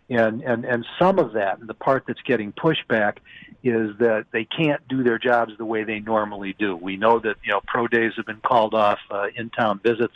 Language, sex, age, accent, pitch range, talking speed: English, male, 60-79, American, 115-145 Hz, 235 wpm